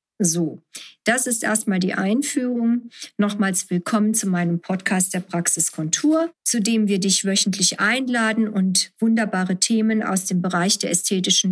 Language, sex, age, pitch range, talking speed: German, female, 50-69, 185-220 Hz, 140 wpm